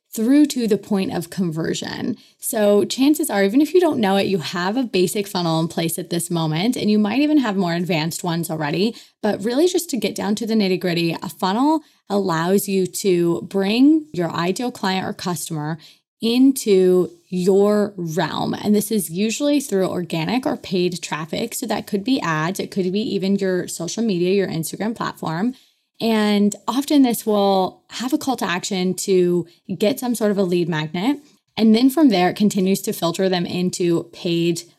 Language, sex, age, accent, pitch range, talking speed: English, female, 20-39, American, 175-220 Hz, 190 wpm